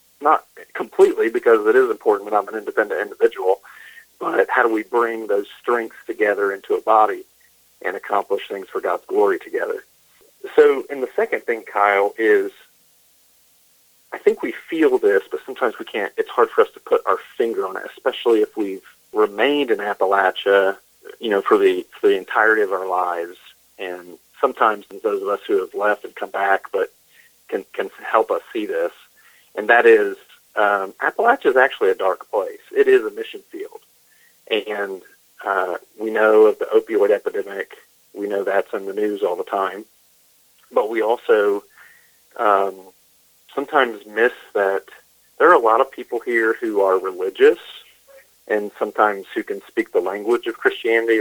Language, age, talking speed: English, 40-59, 170 wpm